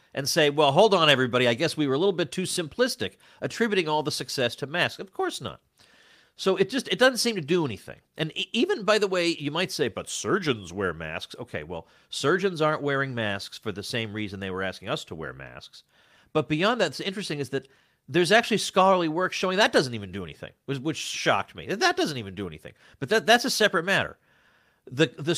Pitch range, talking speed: 105-165 Hz, 225 wpm